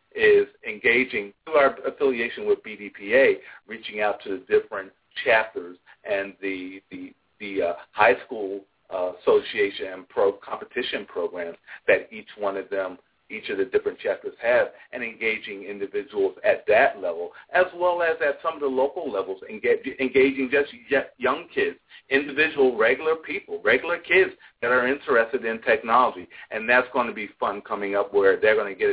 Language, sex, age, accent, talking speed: English, male, 50-69, American, 165 wpm